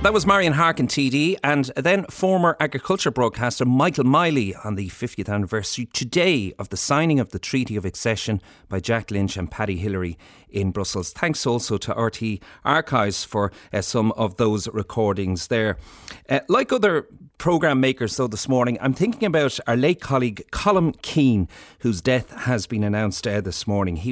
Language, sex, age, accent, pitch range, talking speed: English, male, 40-59, Irish, 100-135 Hz, 175 wpm